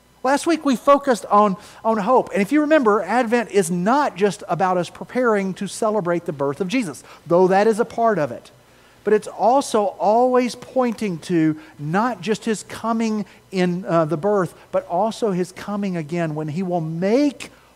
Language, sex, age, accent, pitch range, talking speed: English, male, 40-59, American, 180-225 Hz, 180 wpm